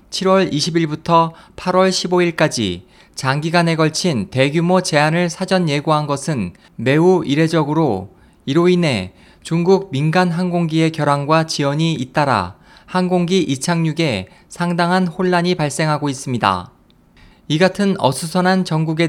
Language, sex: Korean, male